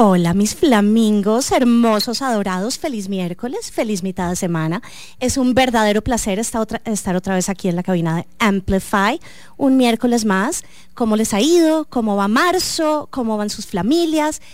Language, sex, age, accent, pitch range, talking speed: English, female, 30-49, Colombian, 190-265 Hz, 155 wpm